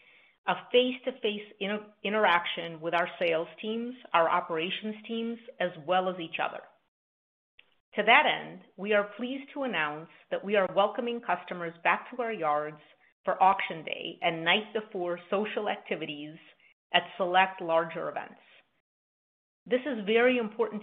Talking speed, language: 140 wpm, English